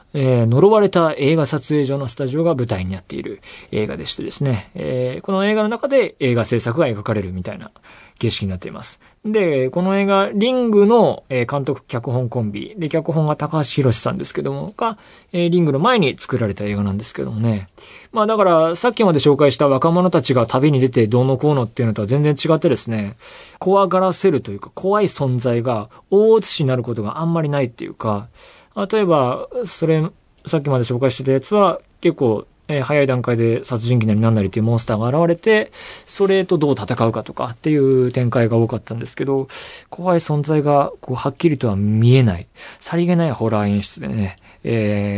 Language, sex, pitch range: Japanese, male, 115-170 Hz